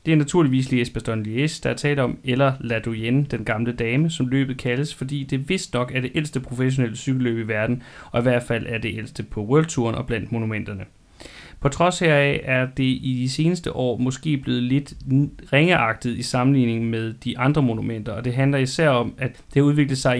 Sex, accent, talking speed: male, native, 210 wpm